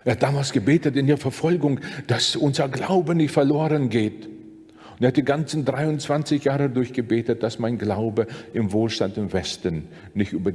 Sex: male